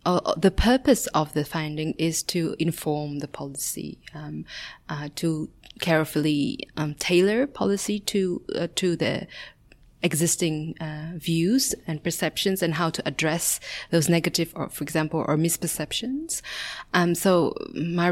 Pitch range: 150-170 Hz